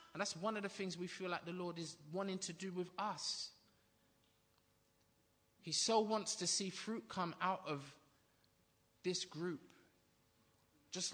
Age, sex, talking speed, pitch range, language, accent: 20-39, male, 155 wpm, 130-185 Hz, English, British